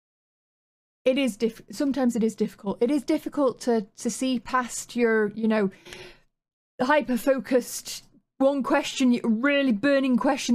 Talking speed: 135 wpm